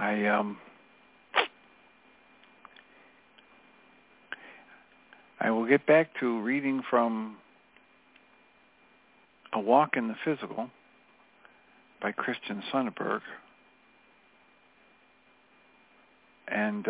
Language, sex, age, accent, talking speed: English, male, 60-79, American, 65 wpm